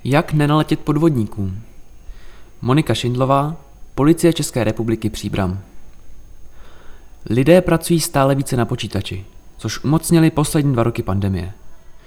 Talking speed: 105 wpm